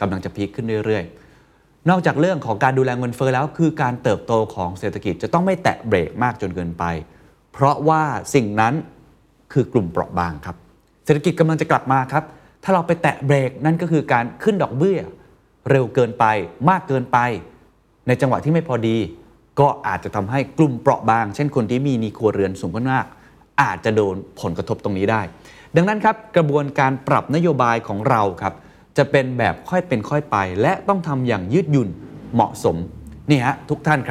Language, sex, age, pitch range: Thai, male, 30-49, 110-150 Hz